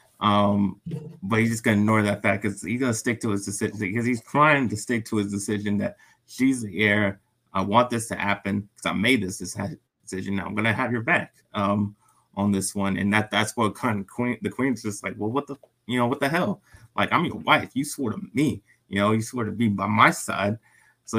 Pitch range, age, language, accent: 100-120 Hz, 20-39, English, American